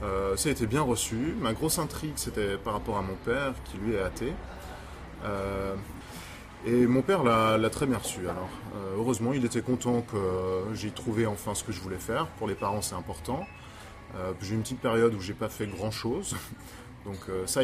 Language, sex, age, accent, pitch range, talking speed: French, male, 20-39, French, 95-125 Hz, 220 wpm